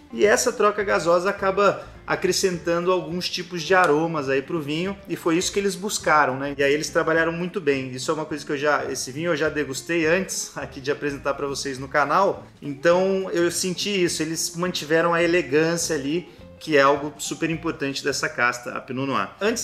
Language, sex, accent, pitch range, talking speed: Portuguese, male, Brazilian, 150-195 Hz, 205 wpm